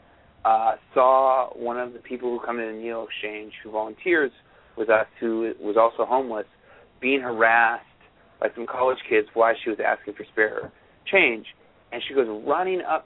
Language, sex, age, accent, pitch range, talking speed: English, male, 30-49, American, 110-135 Hz, 175 wpm